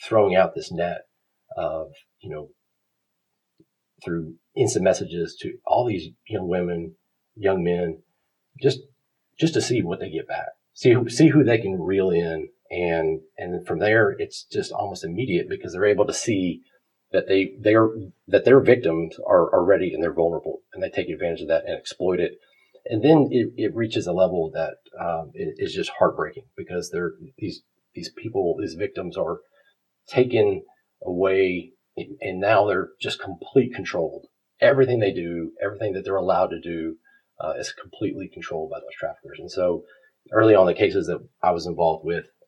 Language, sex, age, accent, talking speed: English, male, 40-59, American, 175 wpm